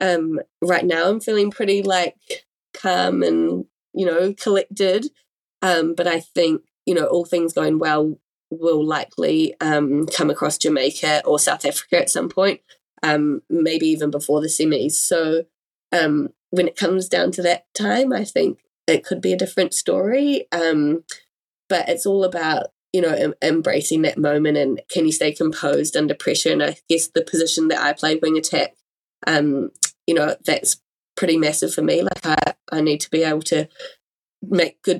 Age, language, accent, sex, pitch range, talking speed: 20-39, English, Australian, female, 155-180 Hz, 175 wpm